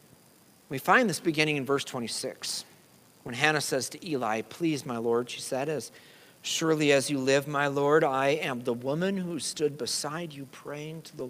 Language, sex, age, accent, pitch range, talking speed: English, male, 50-69, American, 120-165 Hz, 185 wpm